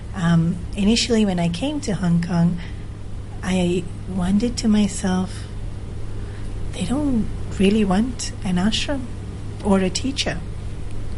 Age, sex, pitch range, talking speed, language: 30-49, female, 170-200 Hz, 115 wpm, English